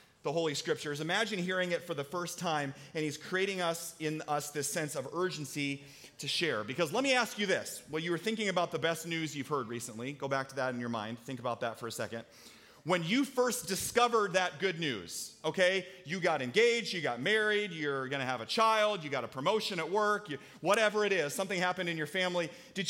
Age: 30-49